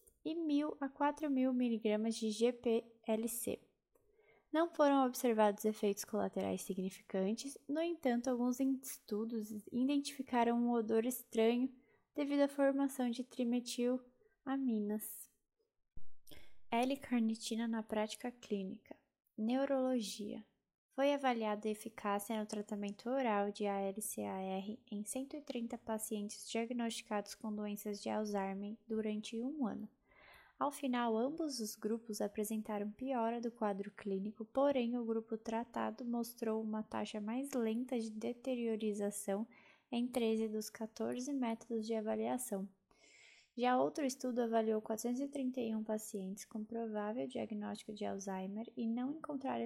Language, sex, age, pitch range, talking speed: Portuguese, female, 10-29, 215-255 Hz, 110 wpm